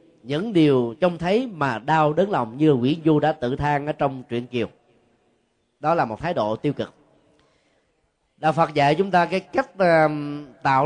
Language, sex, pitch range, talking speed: Vietnamese, male, 140-190 Hz, 180 wpm